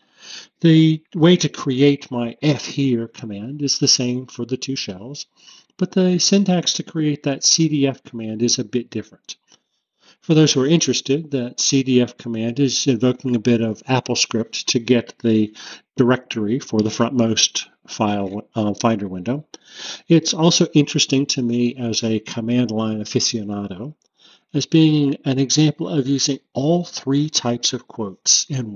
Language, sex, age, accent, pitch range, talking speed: English, male, 50-69, American, 115-145 Hz, 155 wpm